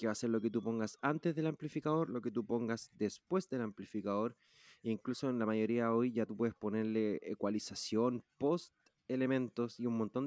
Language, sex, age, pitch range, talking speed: Spanish, male, 30-49, 110-135 Hz, 200 wpm